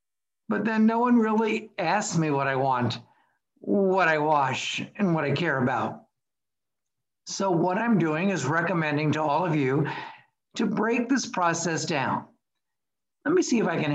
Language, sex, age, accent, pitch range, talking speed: English, male, 60-79, American, 155-220 Hz, 170 wpm